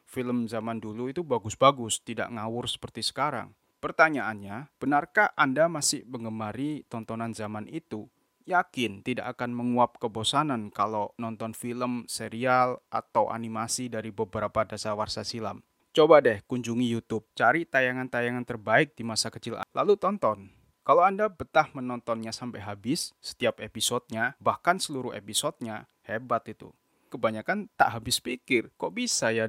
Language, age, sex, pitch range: Indonesian, 30-49, male, 110-130 Hz